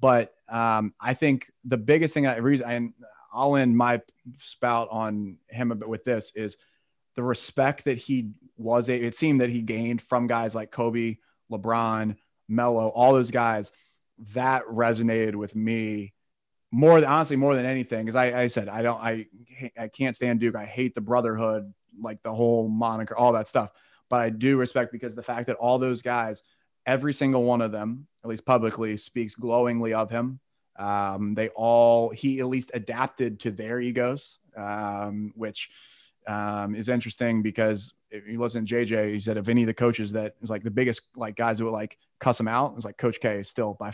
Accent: American